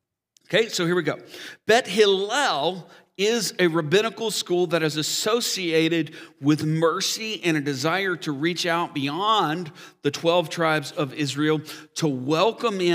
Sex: male